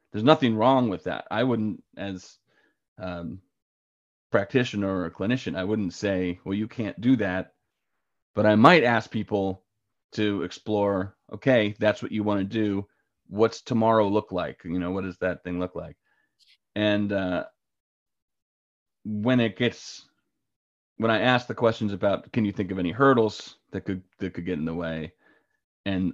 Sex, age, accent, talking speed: male, 30-49, American, 165 wpm